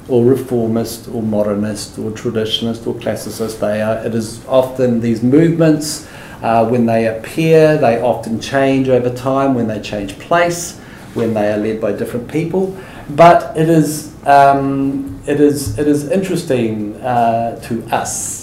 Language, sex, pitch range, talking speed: English, male, 110-135 Hz, 155 wpm